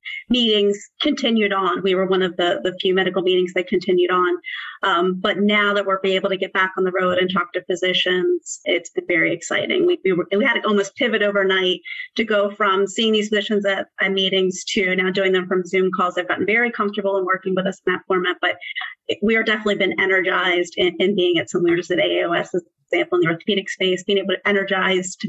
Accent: American